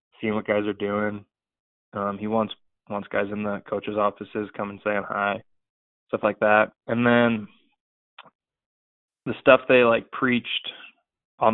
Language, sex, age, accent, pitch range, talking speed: English, male, 20-39, American, 100-110 Hz, 150 wpm